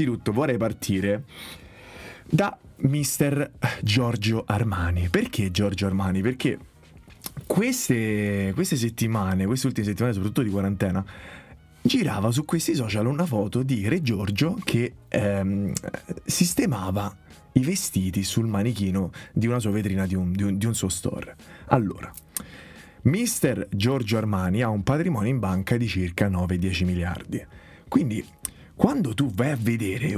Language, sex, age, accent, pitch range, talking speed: Italian, male, 30-49, native, 100-155 Hz, 135 wpm